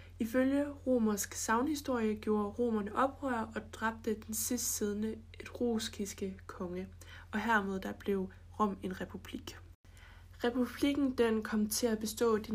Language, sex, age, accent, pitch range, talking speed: Danish, female, 20-39, native, 190-240 Hz, 130 wpm